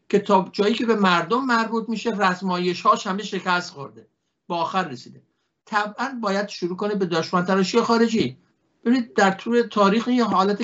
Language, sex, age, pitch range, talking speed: Persian, male, 60-79, 175-210 Hz, 165 wpm